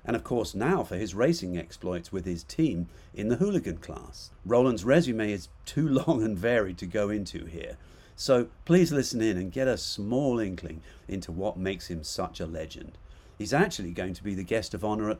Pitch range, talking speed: 85-120 Hz, 205 wpm